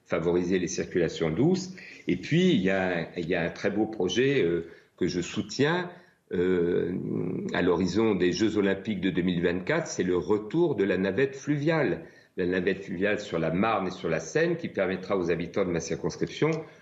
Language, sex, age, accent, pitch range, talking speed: French, male, 50-69, French, 90-135 Hz, 190 wpm